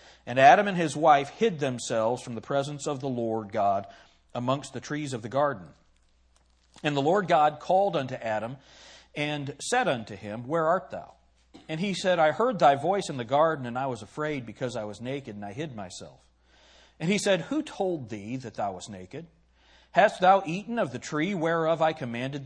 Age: 40-59